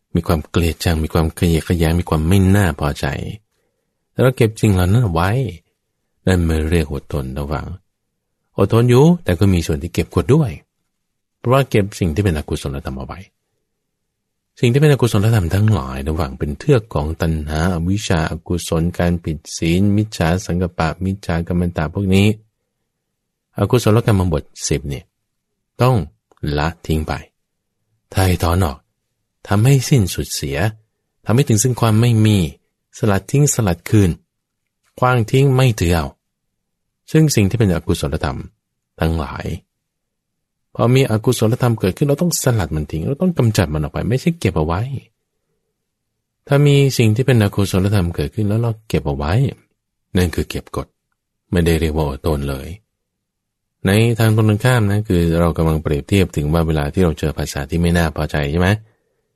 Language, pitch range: English, 80-110 Hz